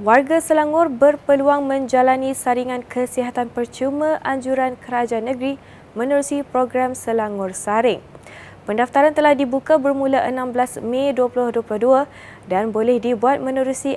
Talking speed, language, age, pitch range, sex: 105 wpm, Malay, 20-39, 230-275 Hz, female